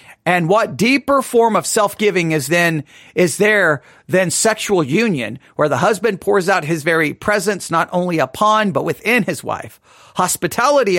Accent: American